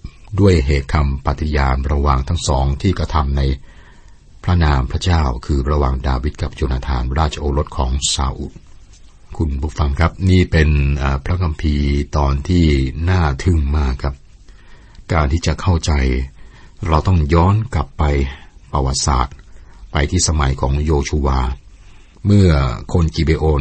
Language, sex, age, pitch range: Thai, male, 60-79, 70-90 Hz